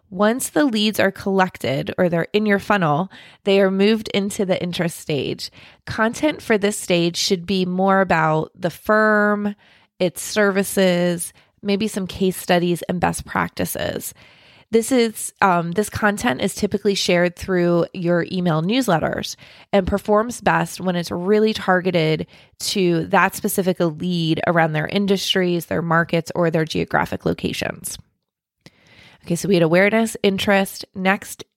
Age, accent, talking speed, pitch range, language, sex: 20-39, American, 145 wpm, 175-205 Hz, English, female